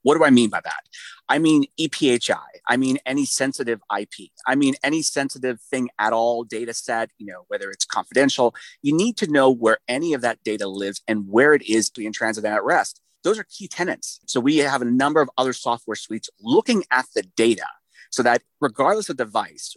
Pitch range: 110-140 Hz